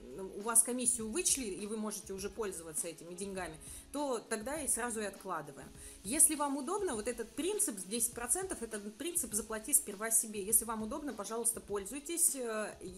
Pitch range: 200-255 Hz